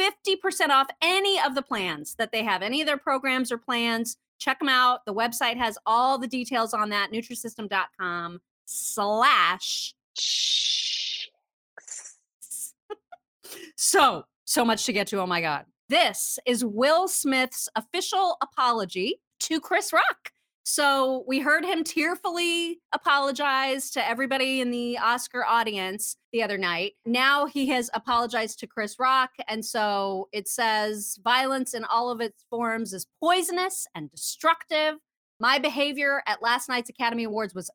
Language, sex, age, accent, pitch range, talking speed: English, female, 30-49, American, 215-290 Hz, 140 wpm